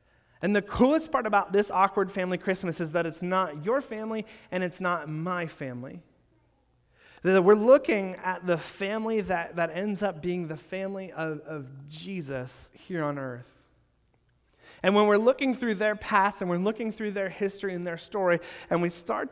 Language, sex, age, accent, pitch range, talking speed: English, male, 30-49, American, 170-200 Hz, 175 wpm